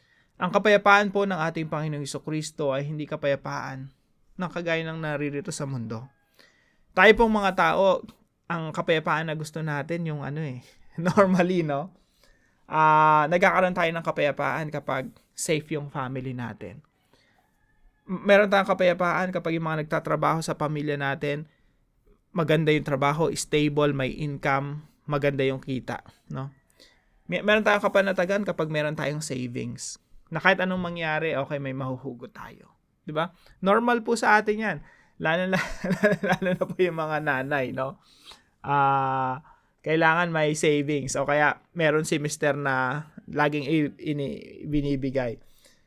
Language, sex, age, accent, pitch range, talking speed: English, male, 20-39, Filipino, 140-185 Hz, 135 wpm